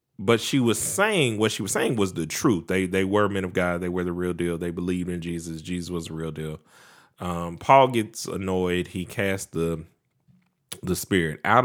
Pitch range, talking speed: 85-105 Hz, 210 wpm